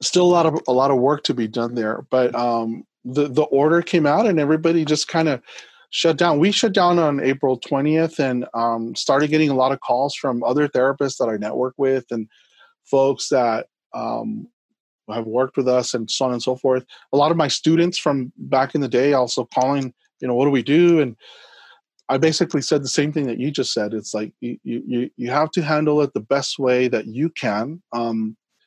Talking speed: 220 wpm